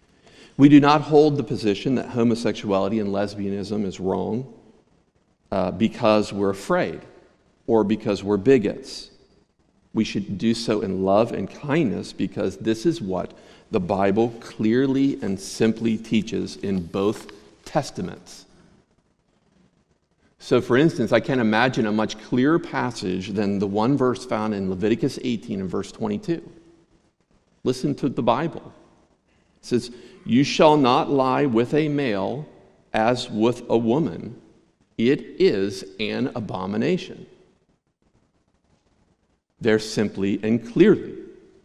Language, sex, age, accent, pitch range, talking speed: English, male, 50-69, American, 100-125 Hz, 125 wpm